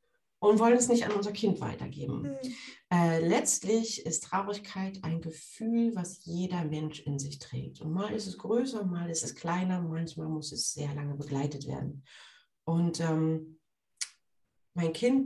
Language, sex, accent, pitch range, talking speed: German, female, German, 155-205 Hz, 155 wpm